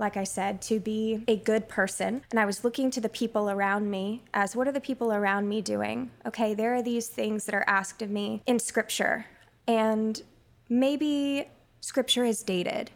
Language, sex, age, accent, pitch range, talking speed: English, female, 20-39, American, 200-240 Hz, 195 wpm